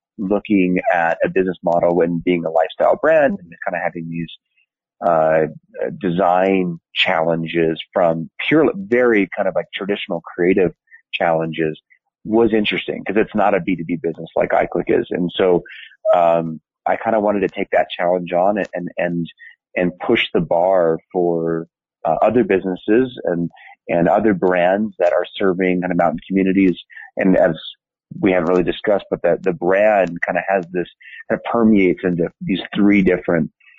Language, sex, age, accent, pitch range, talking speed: English, male, 30-49, American, 85-95 Hz, 165 wpm